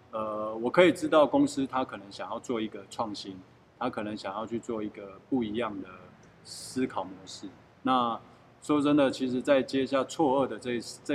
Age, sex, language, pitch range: 20-39, male, Chinese, 105-130 Hz